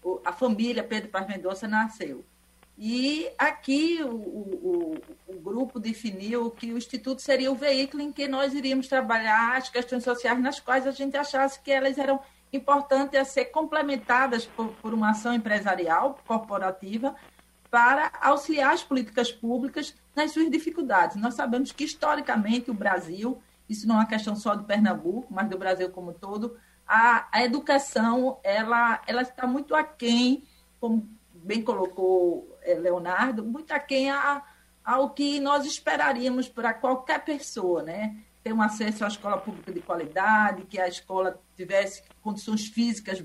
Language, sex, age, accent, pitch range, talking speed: Portuguese, female, 40-59, Brazilian, 210-270 Hz, 150 wpm